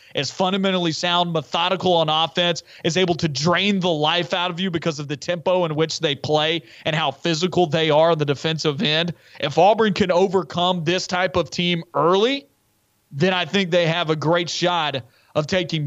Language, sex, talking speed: English, male, 195 wpm